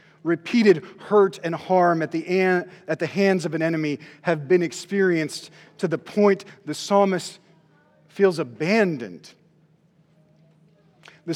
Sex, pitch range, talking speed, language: male, 155-185 Hz, 125 wpm, English